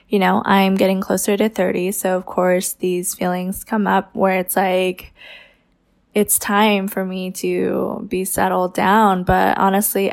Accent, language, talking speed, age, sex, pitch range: American, English, 160 wpm, 20-39, female, 185-220 Hz